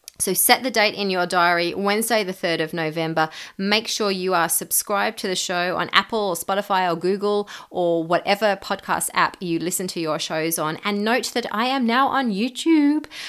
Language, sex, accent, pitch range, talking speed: English, female, Australian, 170-215 Hz, 200 wpm